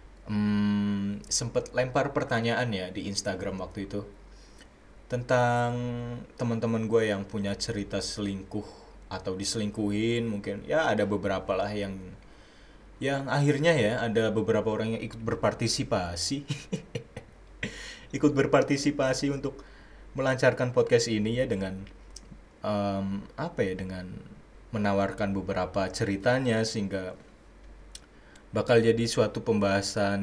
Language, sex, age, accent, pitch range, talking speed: Indonesian, male, 20-39, native, 100-125 Hz, 105 wpm